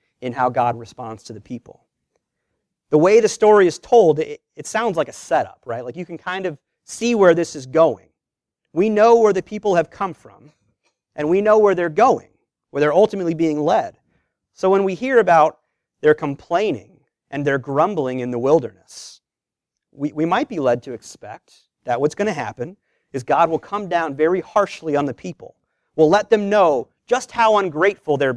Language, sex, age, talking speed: English, male, 40-59, 195 wpm